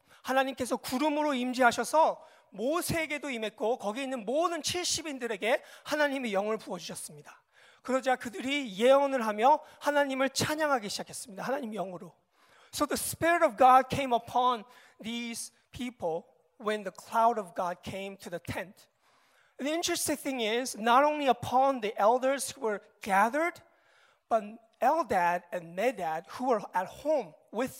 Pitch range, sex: 225-290 Hz, male